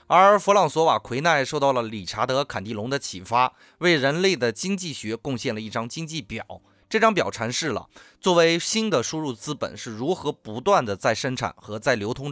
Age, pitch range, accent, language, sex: 20-39, 115-170 Hz, native, Chinese, male